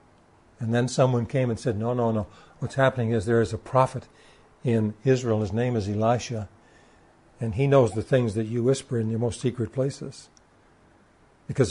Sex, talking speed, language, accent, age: male, 185 wpm, English, American, 60-79